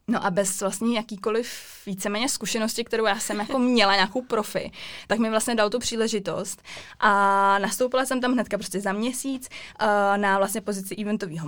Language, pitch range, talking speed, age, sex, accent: Czech, 190-215 Hz, 175 wpm, 20-39, female, native